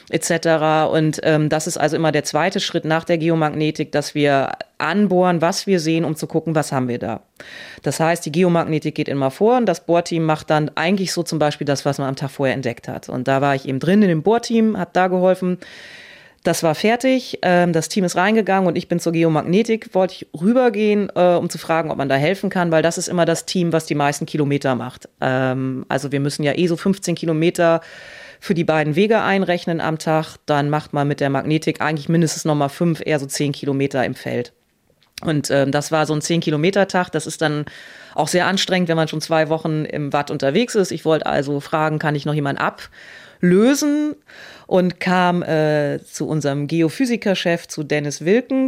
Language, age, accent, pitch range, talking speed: German, 30-49, German, 150-180 Hz, 210 wpm